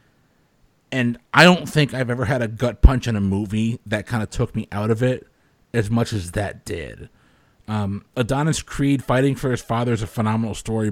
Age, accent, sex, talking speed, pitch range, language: 30-49, American, male, 205 wpm, 110-140 Hz, English